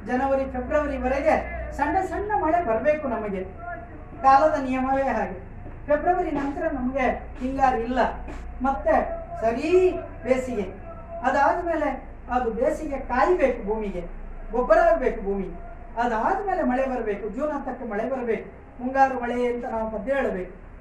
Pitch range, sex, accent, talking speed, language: 225-295 Hz, female, native, 110 wpm, Kannada